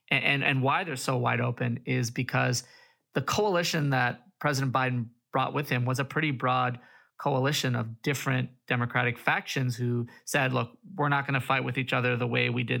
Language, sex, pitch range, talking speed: English, male, 125-140 Hz, 190 wpm